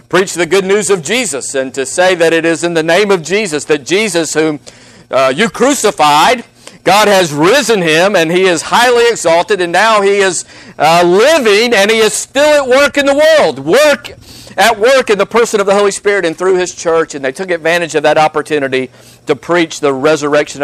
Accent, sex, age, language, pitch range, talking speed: American, male, 50-69, English, 155-220 Hz, 210 wpm